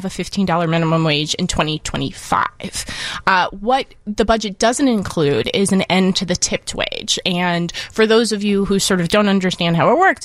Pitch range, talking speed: 170-215 Hz, 185 wpm